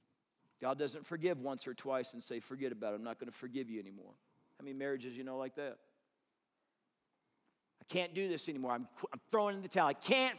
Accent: American